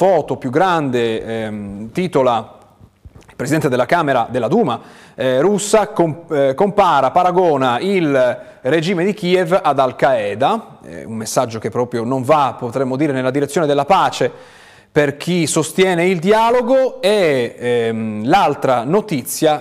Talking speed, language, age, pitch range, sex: 125 wpm, Italian, 30-49, 120-180 Hz, male